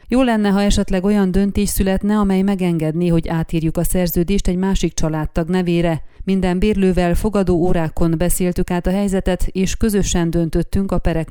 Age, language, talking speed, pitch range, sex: 30-49, Hungarian, 160 wpm, 170-195 Hz, female